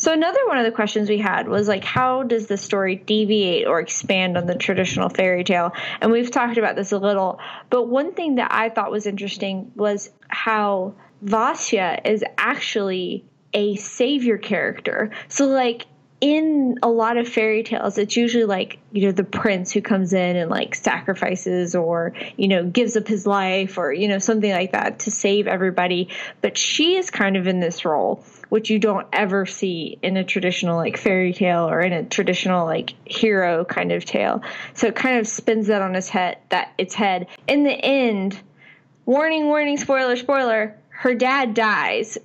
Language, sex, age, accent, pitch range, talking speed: English, female, 20-39, American, 190-240 Hz, 185 wpm